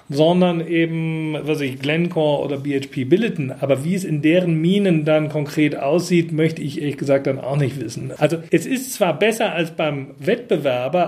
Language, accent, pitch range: German, German, 130-170 Hz